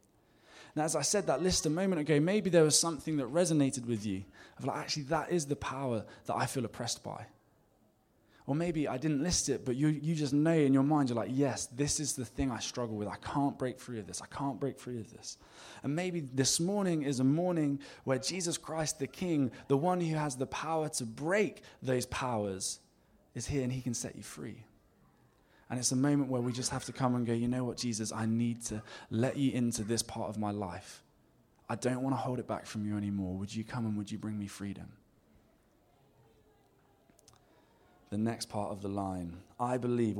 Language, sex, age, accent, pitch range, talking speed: English, male, 20-39, British, 110-145 Hz, 220 wpm